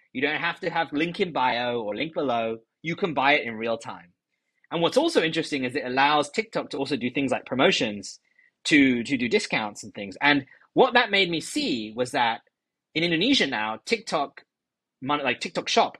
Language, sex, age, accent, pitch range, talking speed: English, male, 20-39, British, 125-180 Hz, 200 wpm